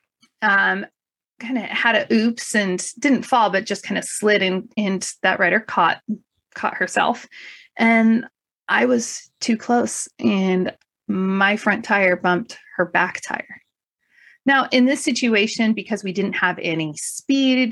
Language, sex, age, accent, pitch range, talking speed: English, female, 30-49, American, 190-255 Hz, 150 wpm